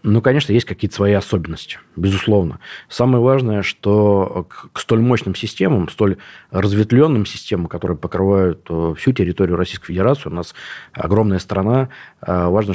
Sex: male